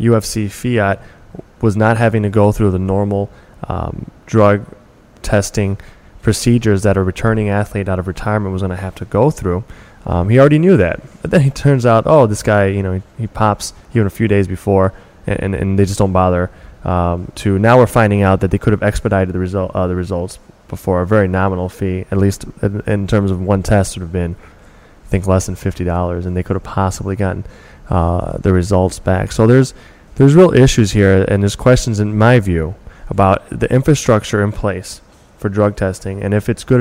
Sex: male